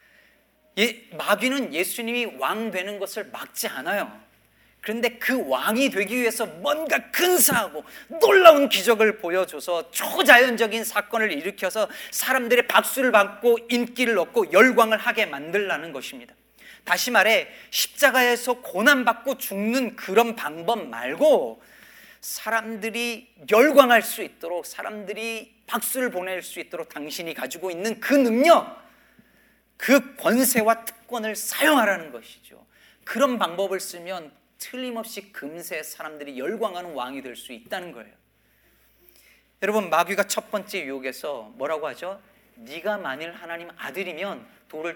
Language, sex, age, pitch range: Korean, male, 40-59, 170-235 Hz